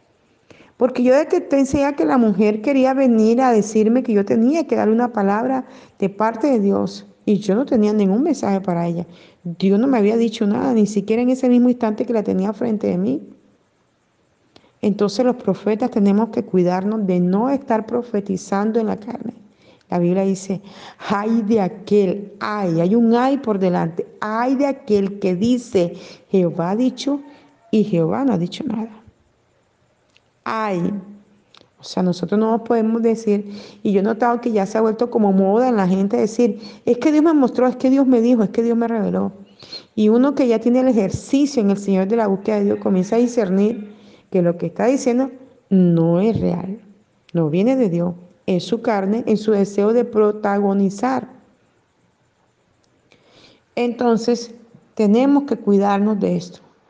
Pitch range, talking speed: 195-245 Hz, 175 wpm